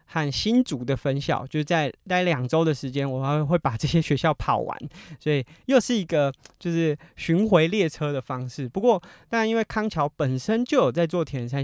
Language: Chinese